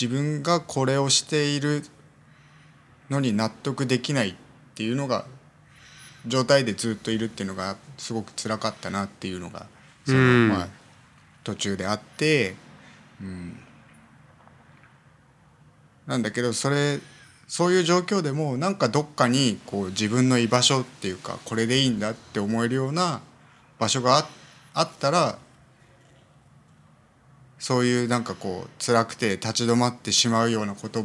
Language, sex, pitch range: Japanese, male, 110-145 Hz